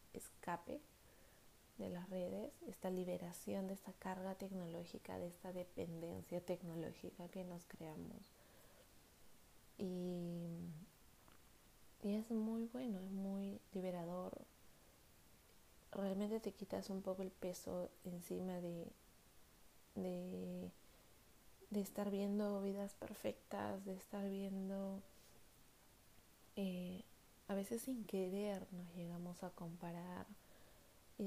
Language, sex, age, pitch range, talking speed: Spanish, female, 20-39, 180-200 Hz, 100 wpm